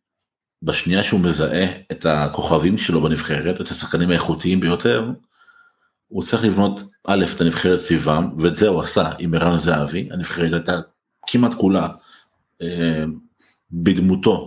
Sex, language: male, Hebrew